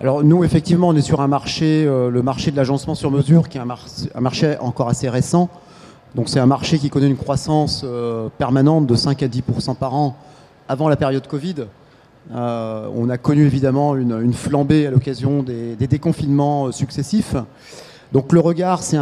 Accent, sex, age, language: French, male, 30-49, French